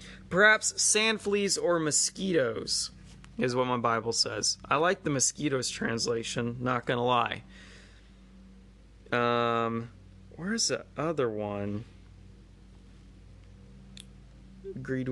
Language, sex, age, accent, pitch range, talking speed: English, male, 20-39, American, 100-145 Hz, 100 wpm